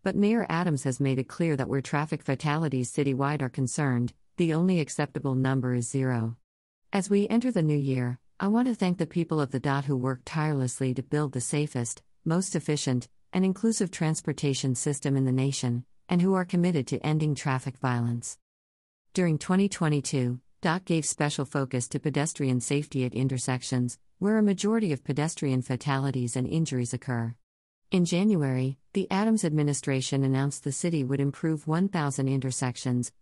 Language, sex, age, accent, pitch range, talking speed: English, female, 50-69, American, 130-160 Hz, 165 wpm